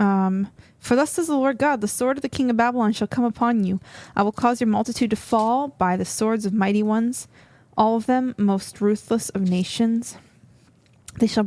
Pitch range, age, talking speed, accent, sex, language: 190-225 Hz, 20-39, 210 wpm, American, female, English